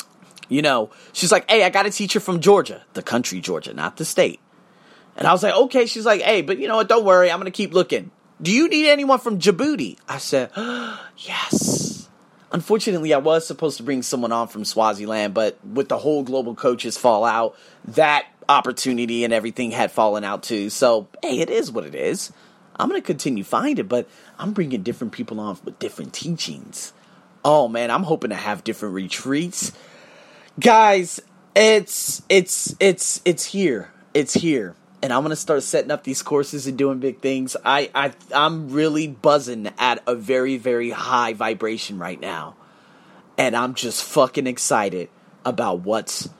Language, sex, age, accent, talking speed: English, male, 30-49, American, 185 wpm